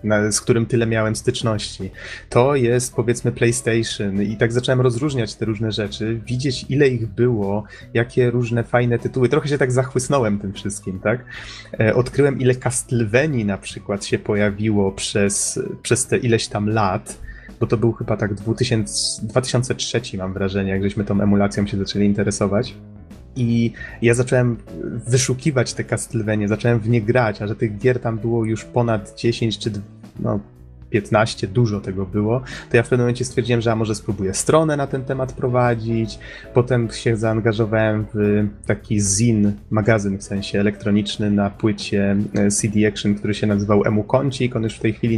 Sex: male